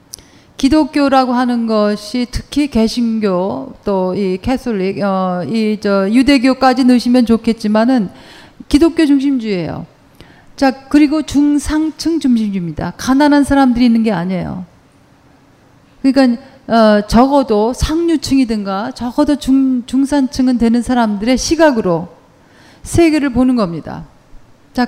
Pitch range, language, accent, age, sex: 210-275 Hz, Korean, native, 40-59, female